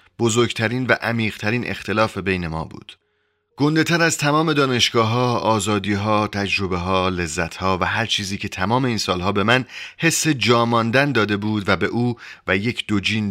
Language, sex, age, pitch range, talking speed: Persian, male, 30-49, 95-120 Hz, 170 wpm